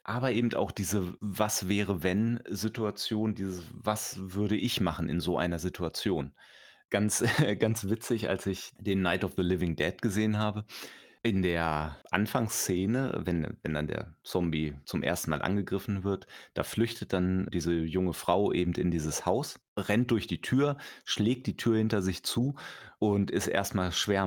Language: German